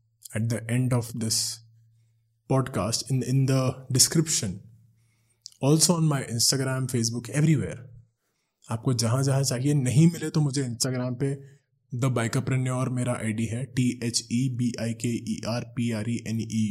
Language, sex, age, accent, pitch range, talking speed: Hindi, male, 20-39, native, 110-135 Hz, 165 wpm